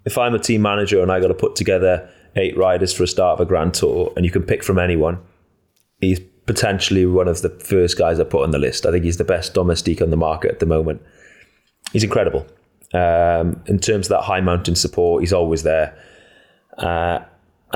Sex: male